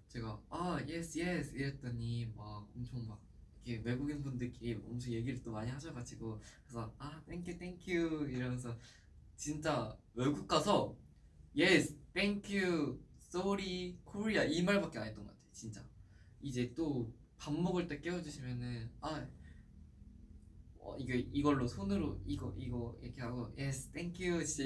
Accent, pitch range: native, 110-150 Hz